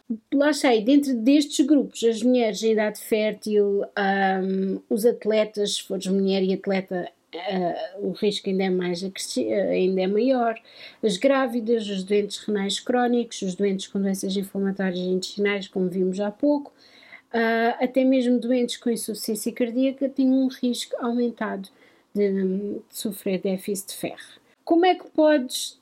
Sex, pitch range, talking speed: female, 200-260 Hz, 150 wpm